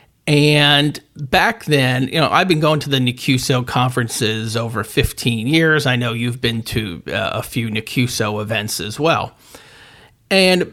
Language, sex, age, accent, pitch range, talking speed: English, male, 40-59, American, 125-155 Hz, 150 wpm